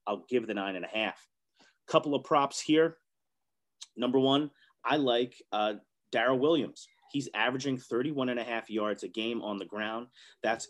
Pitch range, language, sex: 105-130 Hz, English, male